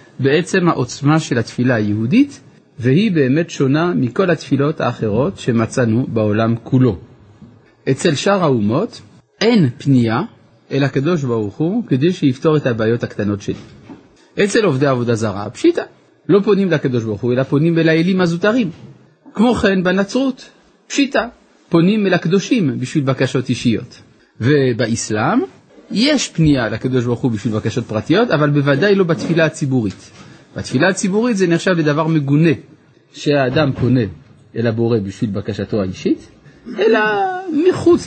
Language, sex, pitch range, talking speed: Hebrew, male, 120-175 Hz, 130 wpm